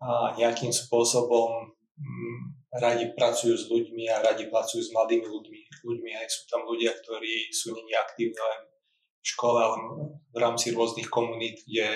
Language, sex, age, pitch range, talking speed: Slovak, male, 20-39, 115-120 Hz, 145 wpm